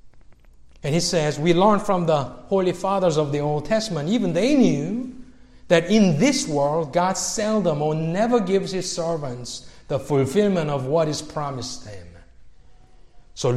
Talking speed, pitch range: 155 wpm, 130-195 Hz